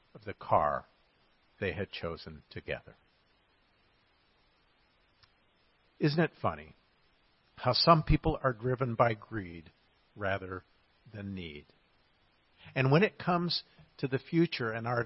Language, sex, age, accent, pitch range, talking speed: English, male, 50-69, American, 110-150 Hz, 115 wpm